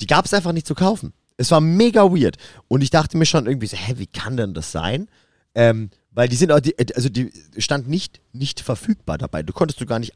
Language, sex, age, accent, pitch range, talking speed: German, male, 30-49, German, 105-155 Hz, 235 wpm